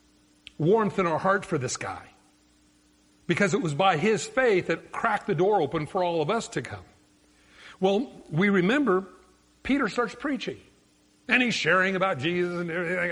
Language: English